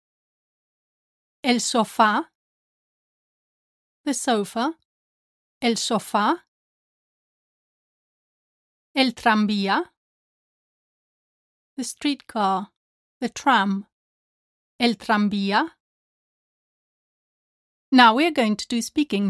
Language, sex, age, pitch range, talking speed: English, female, 30-49, 200-250 Hz, 65 wpm